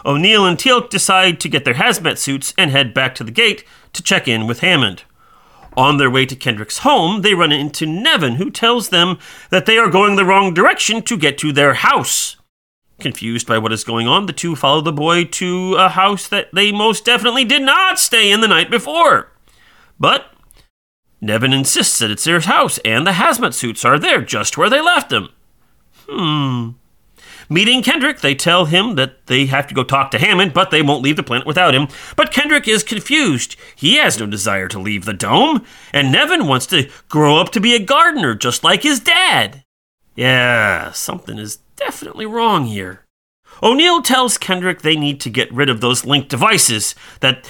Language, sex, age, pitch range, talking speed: English, male, 40-59, 130-205 Hz, 195 wpm